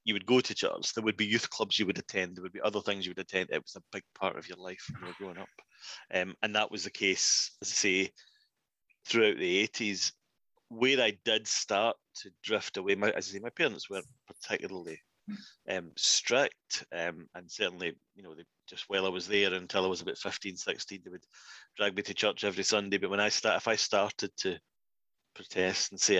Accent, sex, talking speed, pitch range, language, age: British, male, 225 wpm, 95-110 Hz, English, 30-49